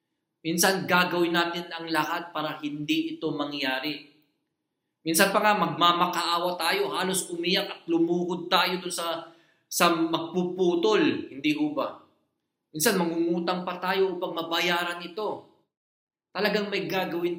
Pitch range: 170-205 Hz